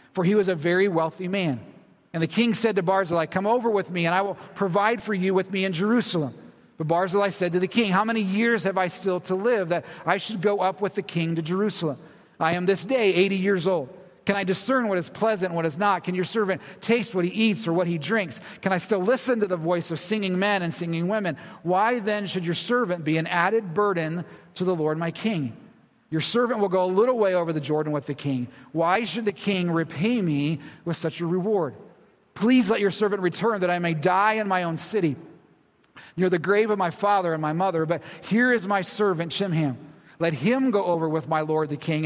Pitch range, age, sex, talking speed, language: 165-205 Hz, 40-59, male, 235 wpm, English